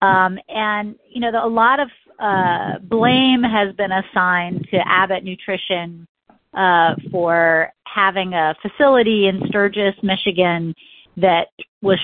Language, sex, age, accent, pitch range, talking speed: English, female, 40-59, American, 175-210 Hz, 125 wpm